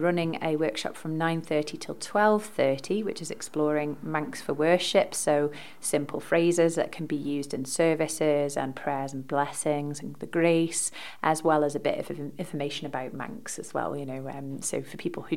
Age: 30-49